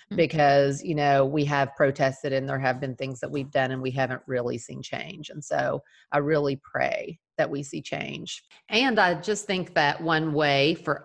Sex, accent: female, American